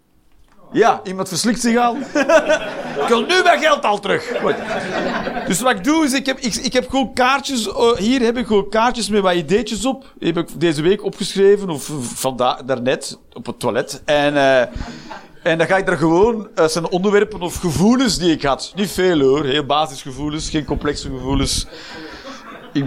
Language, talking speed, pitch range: Dutch, 190 wpm, 155-235 Hz